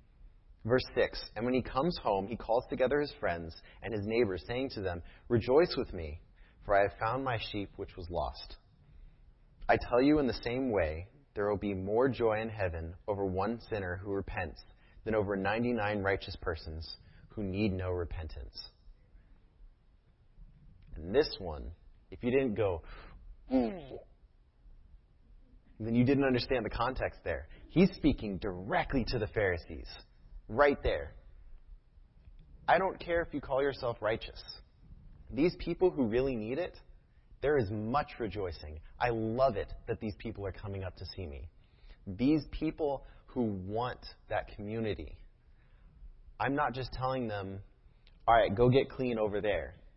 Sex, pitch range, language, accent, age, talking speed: male, 90-120 Hz, English, American, 30-49, 155 wpm